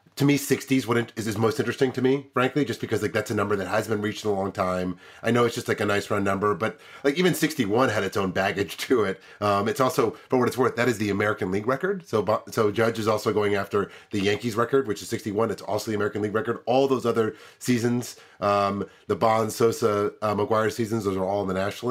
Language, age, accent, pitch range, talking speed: English, 30-49, American, 100-130 Hz, 250 wpm